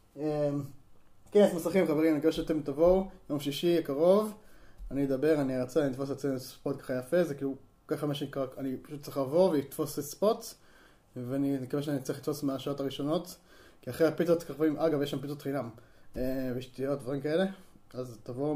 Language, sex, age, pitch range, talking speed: Hebrew, male, 20-39, 130-160 Hz, 180 wpm